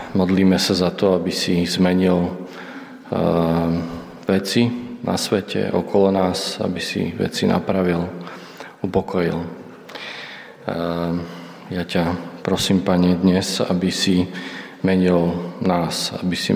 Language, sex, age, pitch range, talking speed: Slovak, male, 40-59, 85-95 Hz, 100 wpm